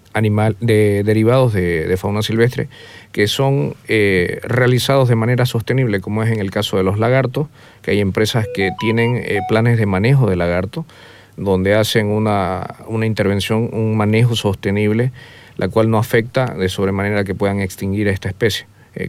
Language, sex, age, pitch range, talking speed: Portuguese, male, 40-59, 95-115 Hz, 170 wpm